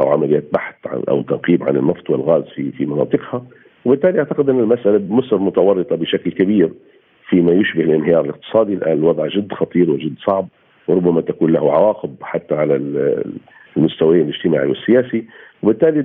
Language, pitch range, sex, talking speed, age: Arabic, 110-170 Hz, male, 150 wpm, 50-69